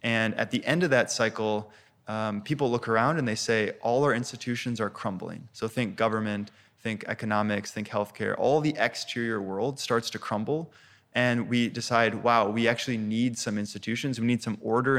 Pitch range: 105-125 Hz